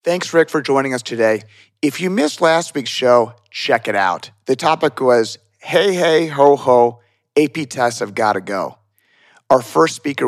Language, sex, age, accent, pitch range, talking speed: English, male, 40-59, American, 110-140 Hz, 180 wpm